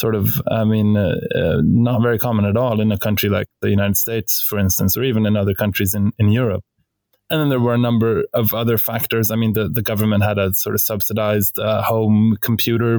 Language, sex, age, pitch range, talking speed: English, male, 20-39, 105-120 Hz, 230 wpm